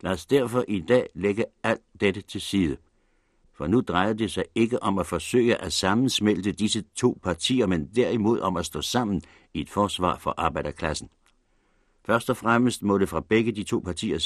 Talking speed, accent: 190 wpm, native